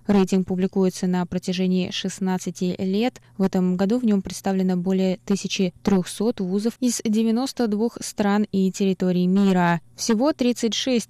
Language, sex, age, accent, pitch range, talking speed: Russian, female, 20-39, native, 185-225 Hz, 125 wpm